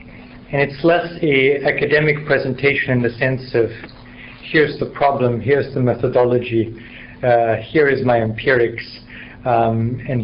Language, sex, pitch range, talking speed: English, male, 115-135 Hz, 135 wpm